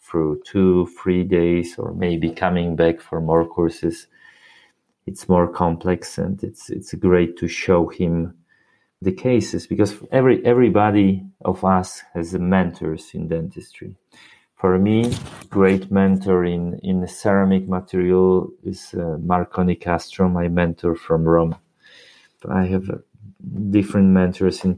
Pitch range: 85-95 Hz